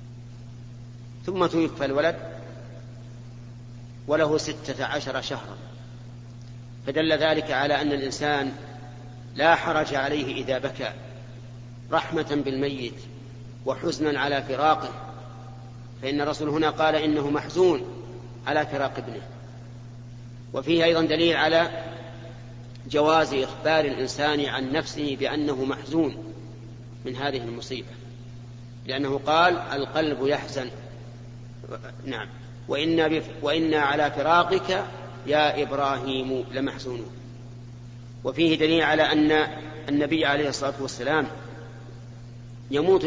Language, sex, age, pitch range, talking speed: Arabic, male, 40-59, 120-150 Hz, 90 wpm